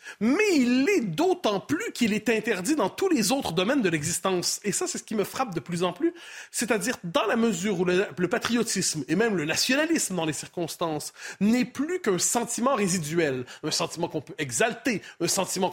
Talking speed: 200 wpm